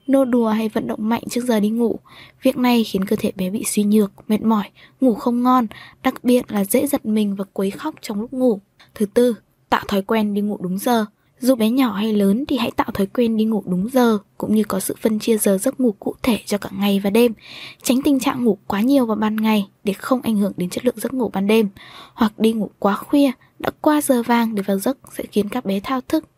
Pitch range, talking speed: 205-255 Hz, 255 wpm